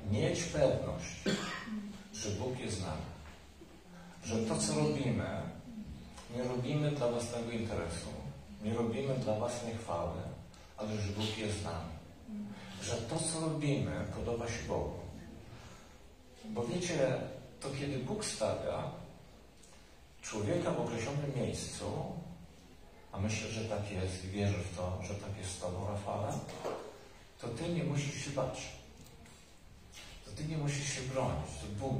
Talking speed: 135 wpm